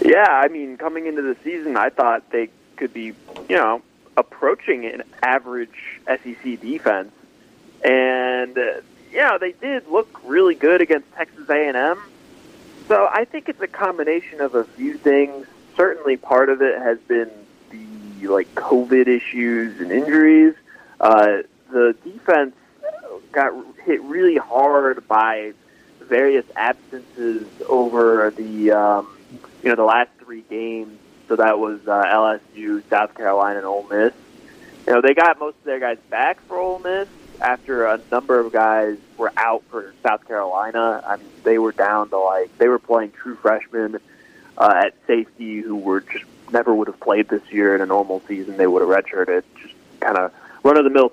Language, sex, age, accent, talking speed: English, male, 30-49, American, 170 wpm